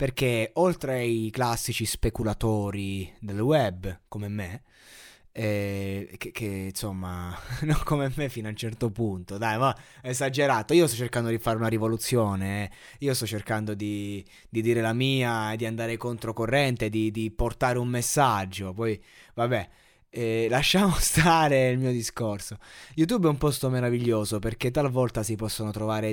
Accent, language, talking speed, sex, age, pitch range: native, Italian, 150 wpm, male, 20-39, 110-145 Hz